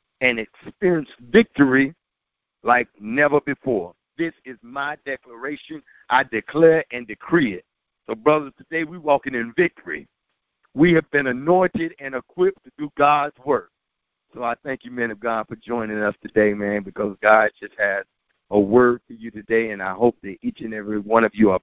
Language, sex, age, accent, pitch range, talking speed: English, male, 50-69, American, 105-135 Hz, 180 wpm